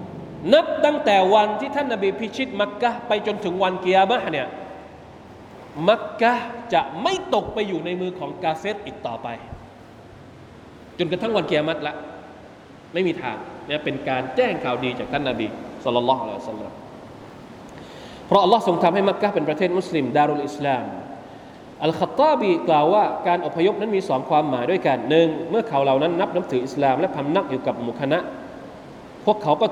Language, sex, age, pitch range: Thai, male, 20-39, 145-210 Hz